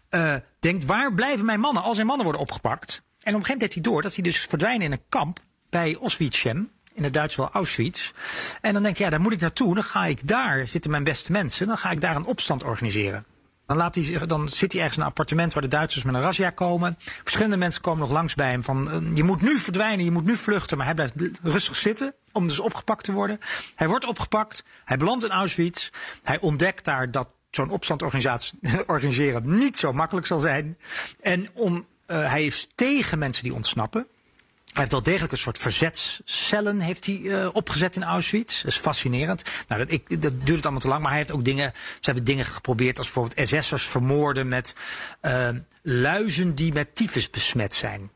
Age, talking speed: 40-59, 215 wpm